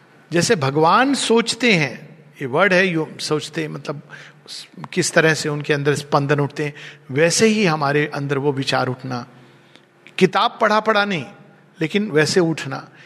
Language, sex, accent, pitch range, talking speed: Hindi, male, native, 145-205 Hz, 150 wpm